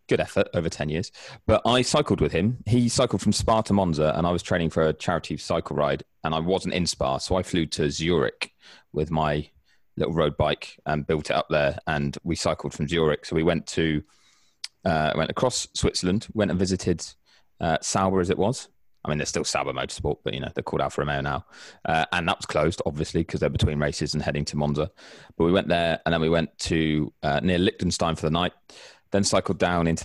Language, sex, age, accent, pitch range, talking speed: English, male, 30-49, British, 75-95 Hz, 225 wpm